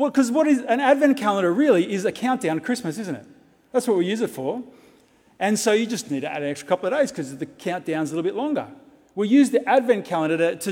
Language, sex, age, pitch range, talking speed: English, male, 30-49, 140-220 Hz, 265 wpm